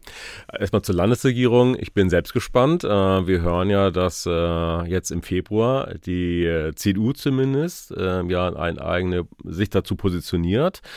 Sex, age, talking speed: male, 40-59, 125 wpm